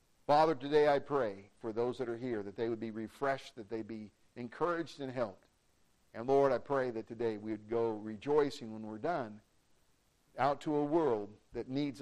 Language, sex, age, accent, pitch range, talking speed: English, male, 50-69, American, 115-170 Hz, 190 wpm